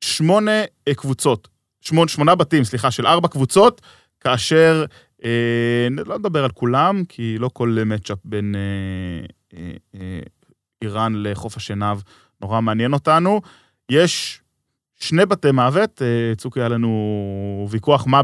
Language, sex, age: Hebrew, male, 20-39